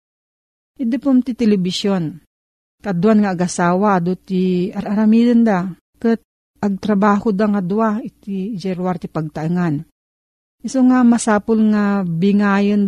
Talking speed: 115 wpm